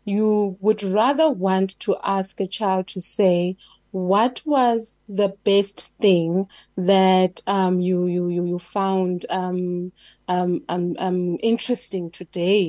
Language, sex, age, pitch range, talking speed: English, female, 30-49, 185-220 Hz, 130 wpm